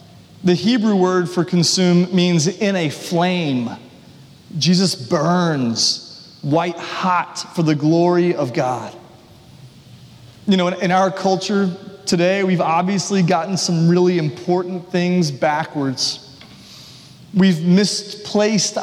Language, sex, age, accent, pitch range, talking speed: English, male, 30-49, American, 155-190 Hz, 110 wpm